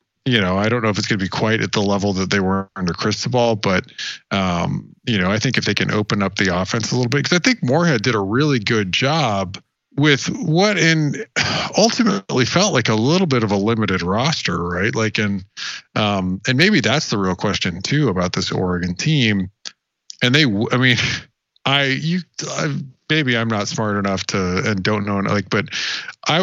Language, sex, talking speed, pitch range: English, male, 205 wpm, 100-150 Hz